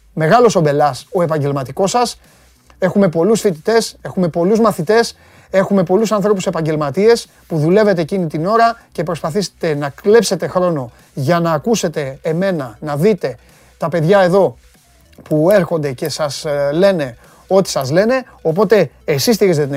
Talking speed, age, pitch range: 140 wpm, 30-49, 145-200 Hz